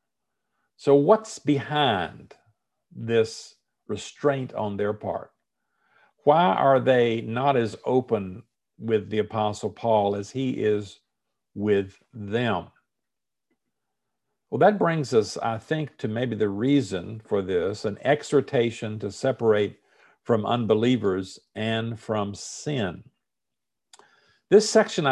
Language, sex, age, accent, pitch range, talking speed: English, male, 50-69, American, 105-140 Hz, 110 wpm